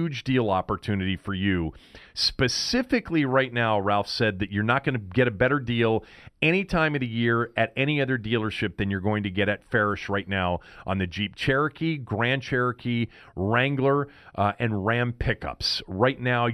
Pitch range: 100-130 Hz